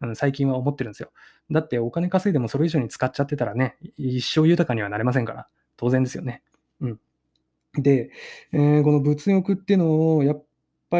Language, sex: Japanese, male